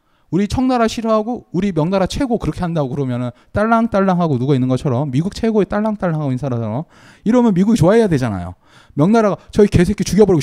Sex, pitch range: male, 125-210 Hz